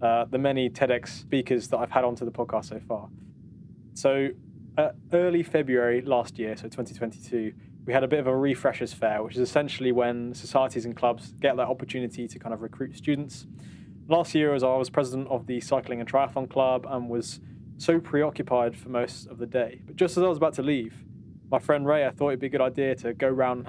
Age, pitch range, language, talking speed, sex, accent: 20-39, 120-140 Hz, English, 220 wpm, male, British